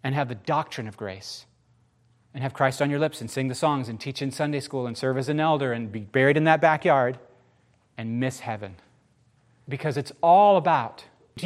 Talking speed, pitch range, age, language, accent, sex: 210 wpm, 125-190 Hz, 30-49, English, American, male